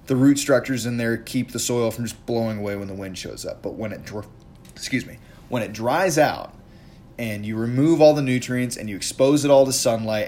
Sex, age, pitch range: male, 20-39, 105-130 Hz